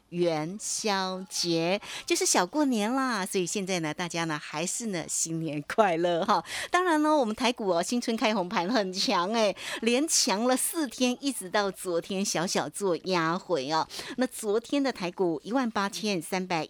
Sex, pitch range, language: female, 170-225 Hz, Chinese